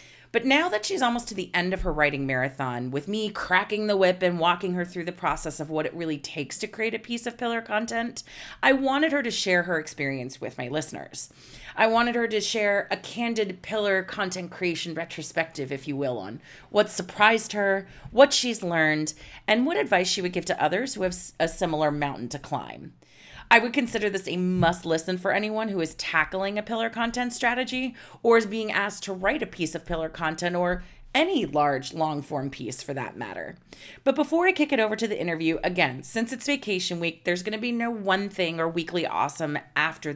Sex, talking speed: female, 210 wpm